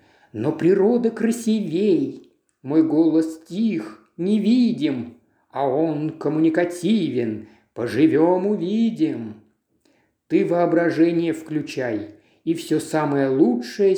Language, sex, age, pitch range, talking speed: Russian, male, 50-69, 140-225 Hz, 85 wpm